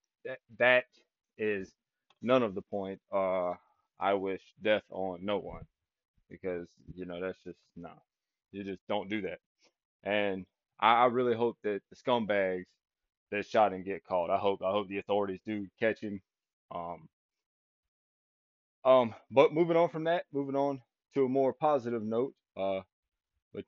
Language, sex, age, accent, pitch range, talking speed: English, male, 20-39, American, 100-125 Hz, 155 wpm